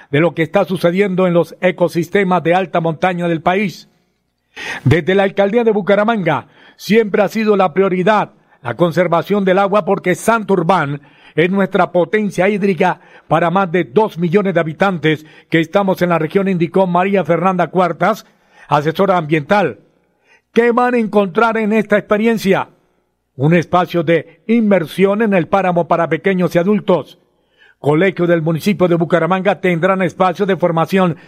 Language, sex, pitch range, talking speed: Spanish, male, 165-195 Hz, 150 wpm